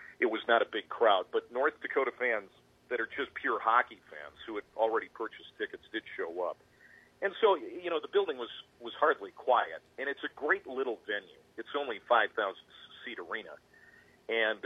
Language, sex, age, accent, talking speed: English, male, 40-59, American, 185 wpm